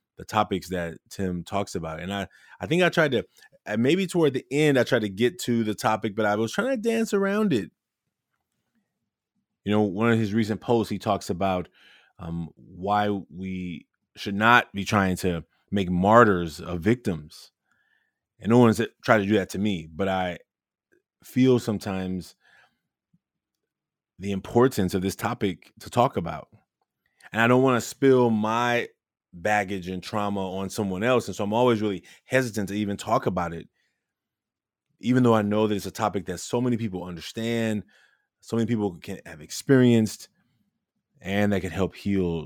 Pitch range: 90-115 Hz